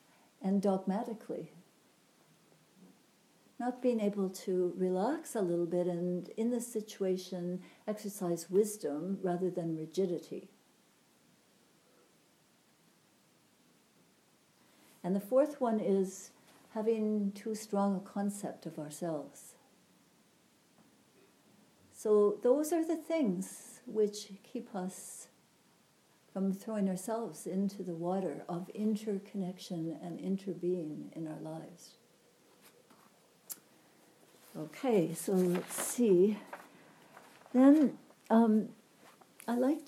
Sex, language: female, English